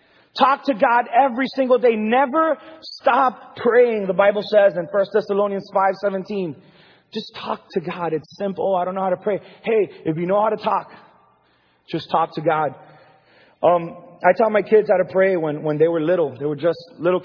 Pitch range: 150-200 Hz